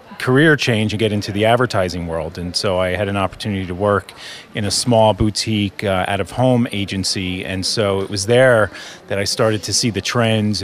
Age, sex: 30-49, male